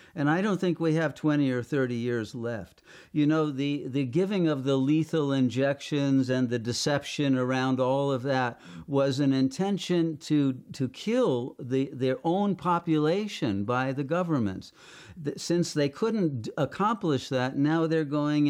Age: 50-69